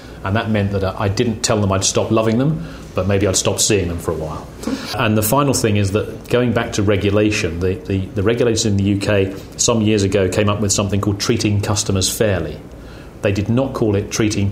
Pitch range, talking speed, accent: 95-110 Hz, 225 wpm, British